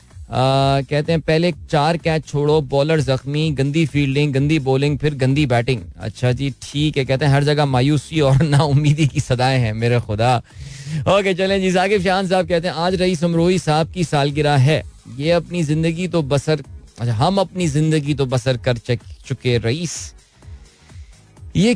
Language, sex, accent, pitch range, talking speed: Hindi, male, native, 115-150 Hz, 170 wpm